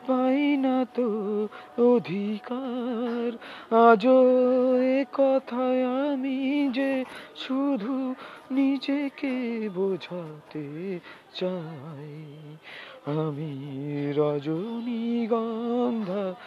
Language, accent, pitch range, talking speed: Bengali, native, 145-225 Hz, 35 wpm